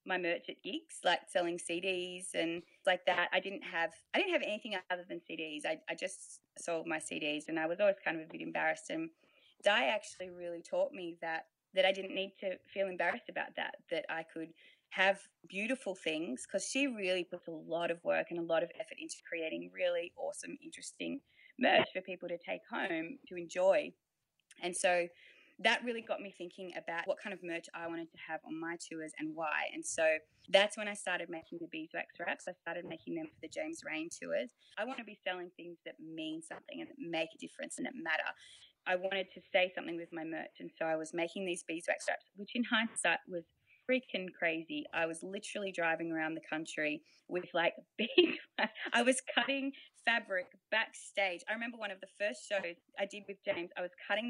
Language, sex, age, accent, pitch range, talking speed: English, female, 20-39, Australian, 170-290 Hz, 210 wpm